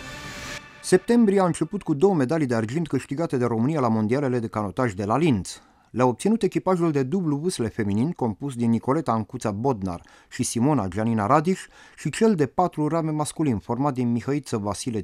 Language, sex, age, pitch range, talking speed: Romanian, male, 30-49, 115-155 Hz, 175 wpm